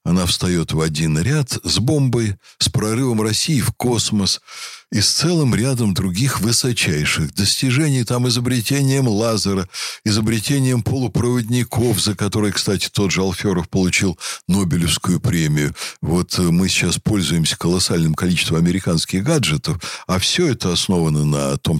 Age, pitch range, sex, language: 60-79, 85-125 Hz, male, Russian